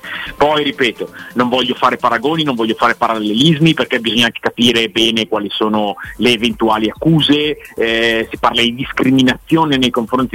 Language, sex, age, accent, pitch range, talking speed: Italian, male, 30-49, native, 110-135 Hz, 155 wpm